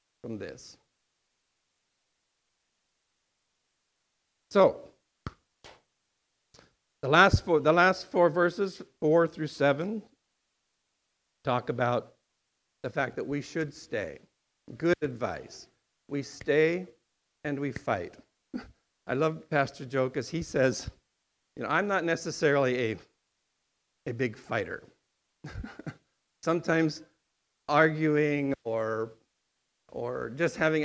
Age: 50-69